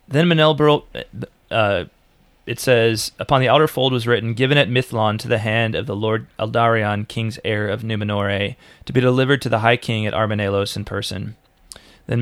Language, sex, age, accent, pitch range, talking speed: English, male, 30-49, American, 105-125 Hz, 185 wpm